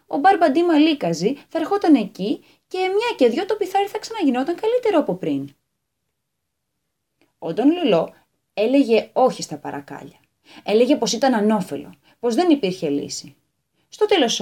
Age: 20-39